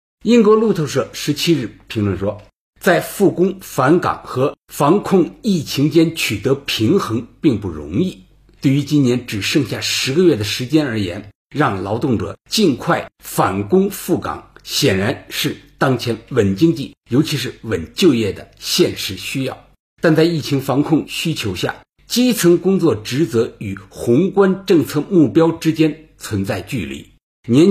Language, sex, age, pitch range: Chinese, male, 60-79, 115-165 Hz